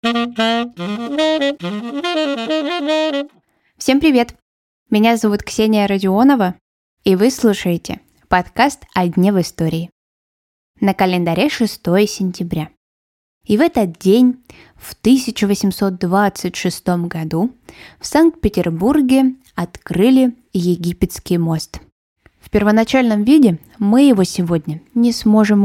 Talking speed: 90 wpm